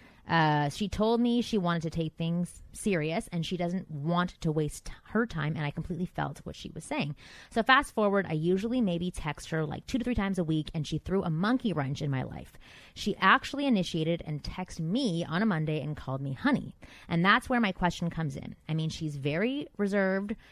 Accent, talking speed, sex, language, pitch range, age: American, 220 wpm, female, English, 150-200 Hz, 20-39